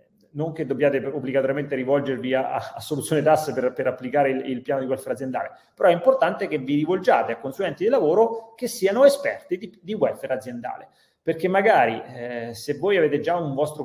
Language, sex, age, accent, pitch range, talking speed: Italian, male, 30-49, native, 125-175 Hz, 195 wpm